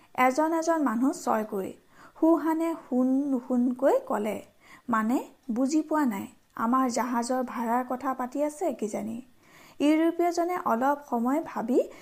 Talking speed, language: 80 wpm, Hindi